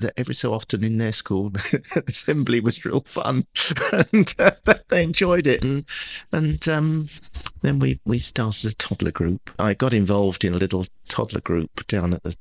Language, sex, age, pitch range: English, male, 40-59, 95-120 Hz